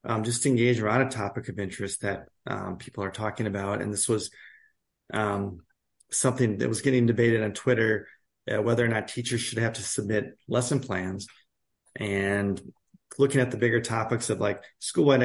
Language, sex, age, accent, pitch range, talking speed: English, male, 30-49, American, 105-125 Hz, 180 wpm